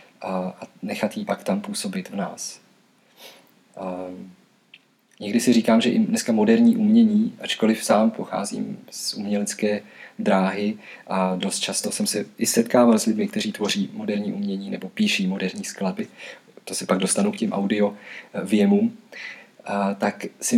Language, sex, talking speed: Czech, male, 145 wpm